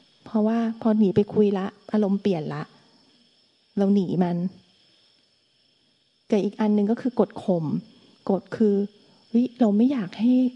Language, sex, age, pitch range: Thai, female, 30-49, 195-245 Hz